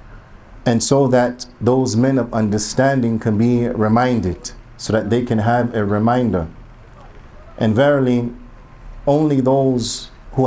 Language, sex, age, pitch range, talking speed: English, male, 50-69, 115-130 Hz, 125 wpm